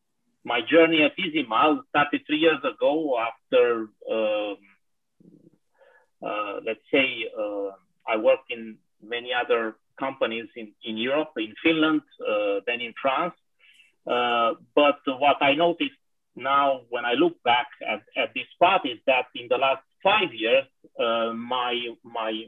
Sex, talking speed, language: male, 140 wpm, English